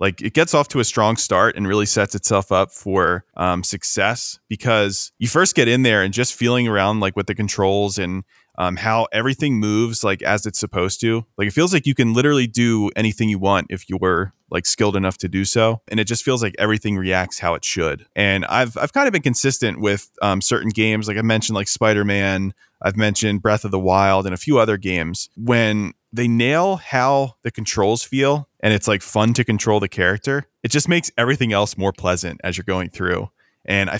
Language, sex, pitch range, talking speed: English, male, 95-120 Hz, 220 wpm